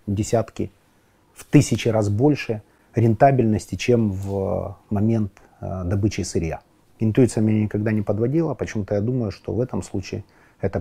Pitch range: 100-120 Hz